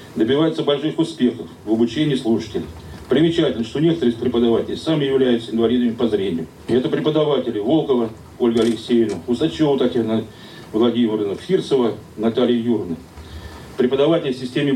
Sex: male